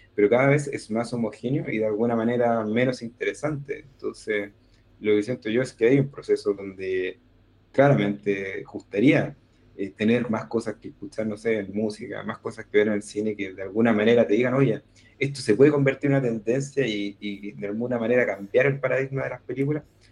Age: 20-39